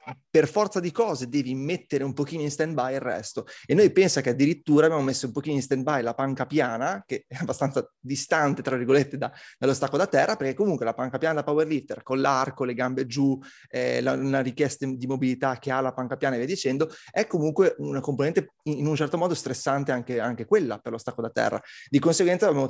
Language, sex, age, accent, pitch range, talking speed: Italian, male, 30-49, native, 130-160 Hz, 220 wpm